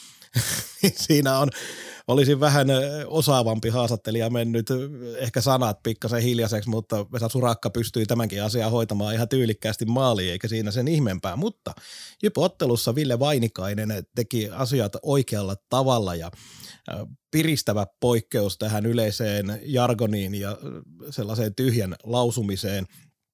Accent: native